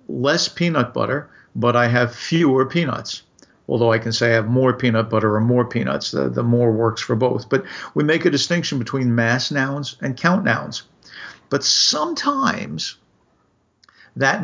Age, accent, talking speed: 50-69, American, 165 wpm